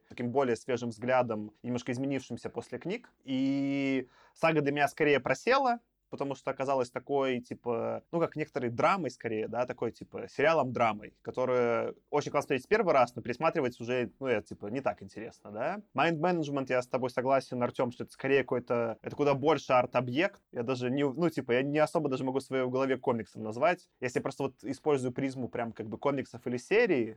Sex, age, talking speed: male, 20-39, 190 wpm